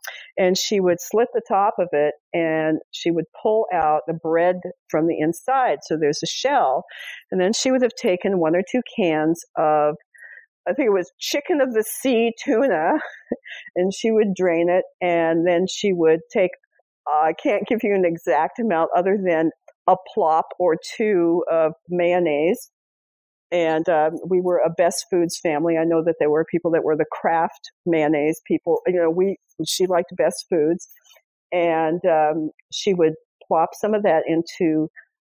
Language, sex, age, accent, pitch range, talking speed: English, female, 50-69, American, 160-205 Hz, 175 wpm